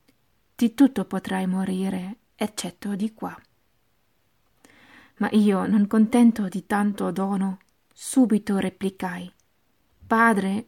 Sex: female